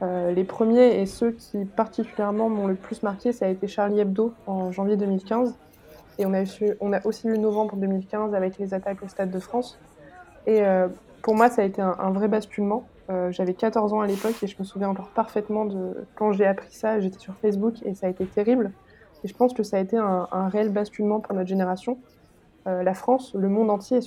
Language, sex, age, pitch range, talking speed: French, female, 20-39, 190-225 Hz, 230 wpm